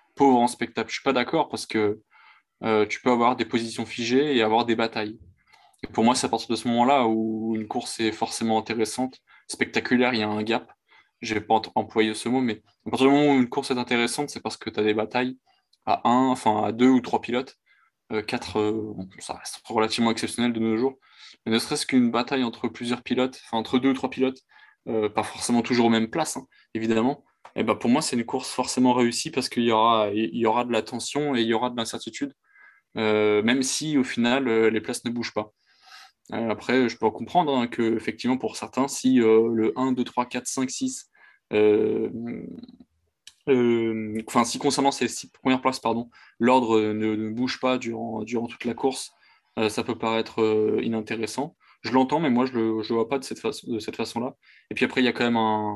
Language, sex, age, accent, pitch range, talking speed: French, male, 20-39, French, 110-130 Hz, 225 wpm